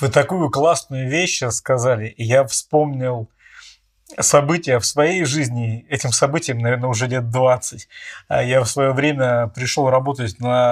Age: 20-39